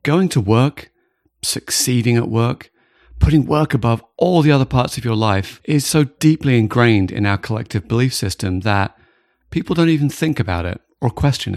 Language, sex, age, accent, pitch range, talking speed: English, male, 40-59, British, 105-145 Hz, 175 wpm